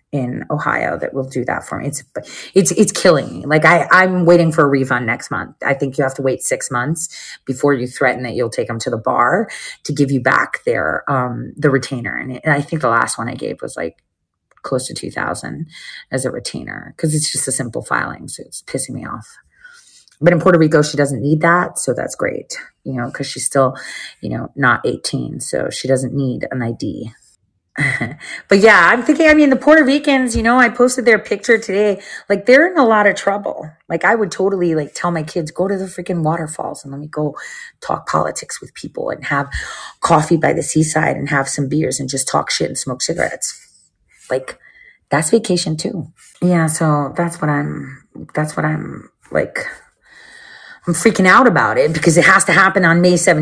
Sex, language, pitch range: female, English, 145-200 Hz